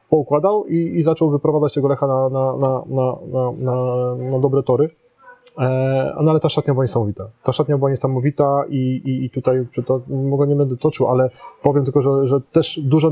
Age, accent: 30-49, native